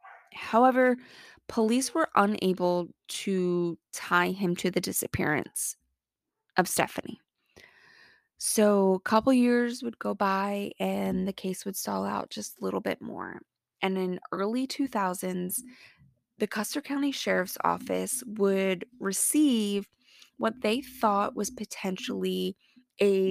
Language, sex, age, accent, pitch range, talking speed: English, female, 20-39, American, 180-230 Hz, 120 wpm